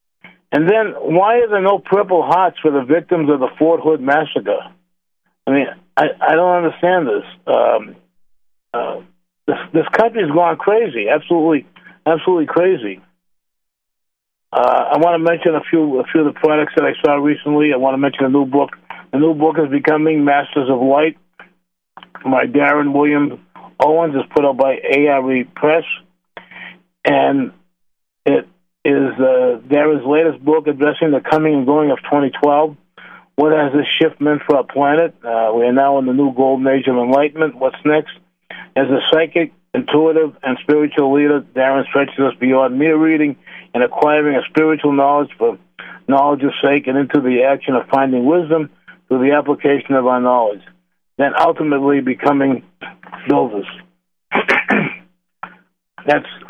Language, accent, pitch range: English, American, 135-160 Hz